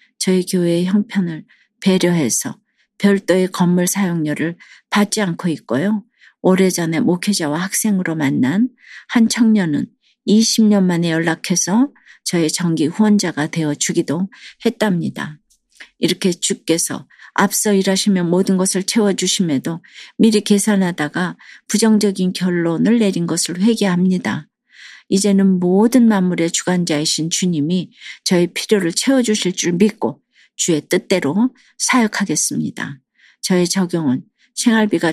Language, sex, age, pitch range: Korean, female, 50-69, 170-210 Hz